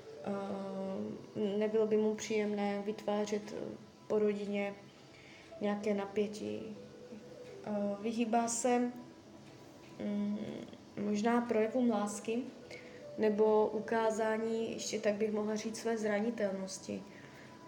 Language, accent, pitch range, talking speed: Czech, native, 200-230 Hz, 90 wpm